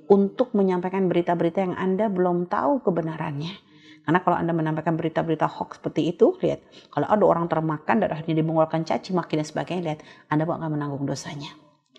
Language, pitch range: Indonesian, 155-190 Hz